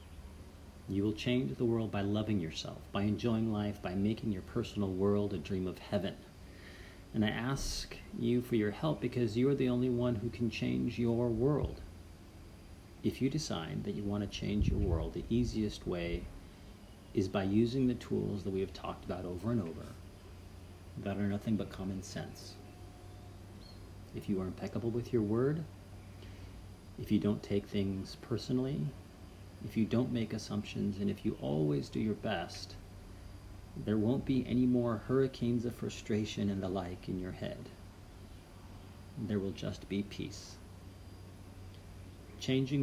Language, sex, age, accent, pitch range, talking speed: English, male, 40-59, American, 95-115 Hz, 160 wpm